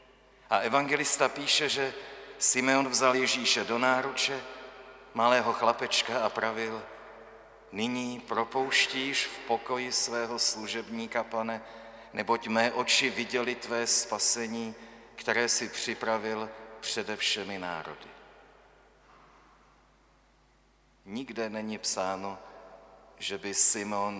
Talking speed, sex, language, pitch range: 95 wpm, male, Czech, 110-130 Hz